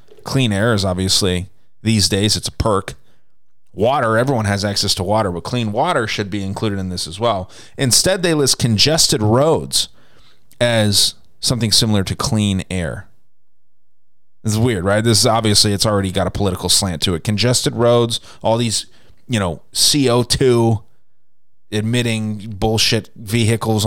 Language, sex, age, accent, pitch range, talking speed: English, male, 30-49, American, 100-120 Hz, 150 wpm